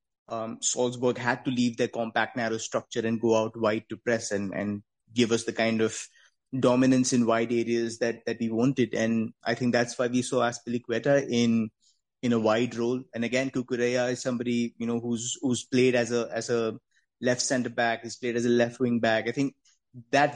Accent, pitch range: Indian, 115-135 Hz